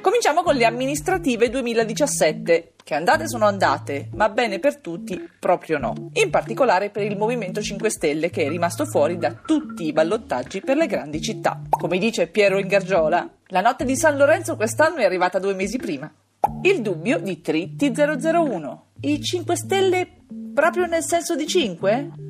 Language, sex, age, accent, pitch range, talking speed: Italian, female, 40-59, native, 190-290 Hz, 165 wpm